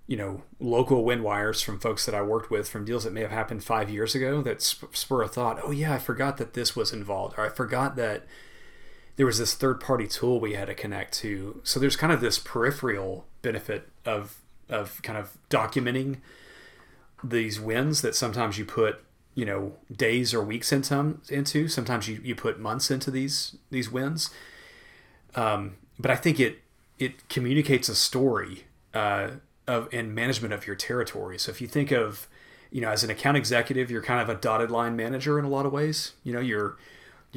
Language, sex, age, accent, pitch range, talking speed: English, male, 30-49, American, 110-135 Hz, 200 wpm